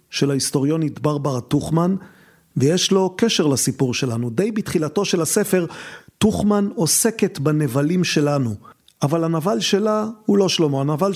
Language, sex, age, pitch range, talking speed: Hebrew, male, 50-69, 145-190 Hz, 130 wpm